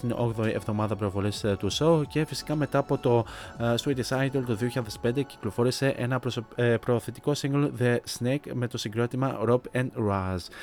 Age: 20-39